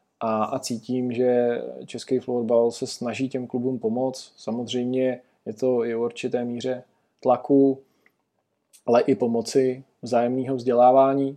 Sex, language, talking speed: male, Czech, 120 wpm